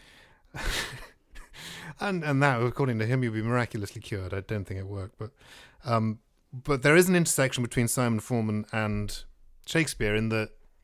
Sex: male